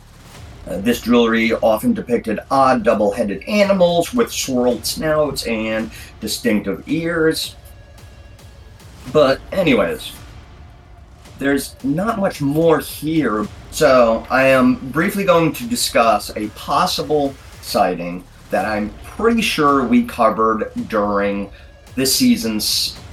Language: English